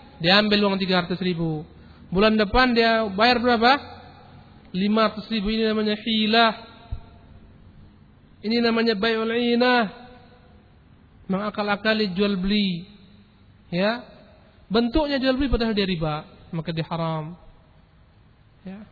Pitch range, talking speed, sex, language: 170-220 Hz, 105 wpm, male, Malay